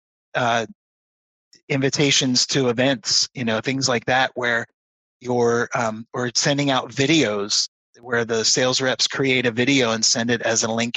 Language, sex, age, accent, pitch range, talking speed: English, male, 30-49, American, 115-140 Hz, 160 wpm